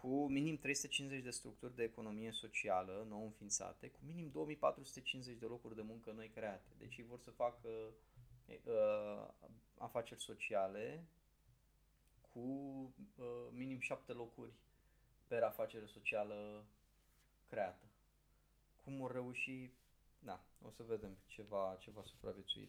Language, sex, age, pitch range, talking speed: Romanian, male, 20-39, 110-135 Hz, 130 wpm